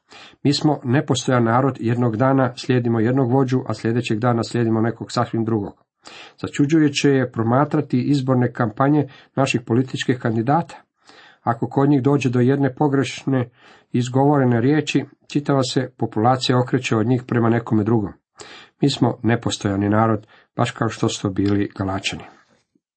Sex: male